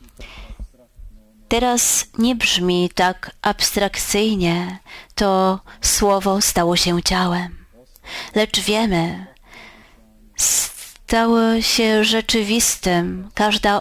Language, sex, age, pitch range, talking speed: Polish, female, 30-49, 180-220 Hz, 70 wpm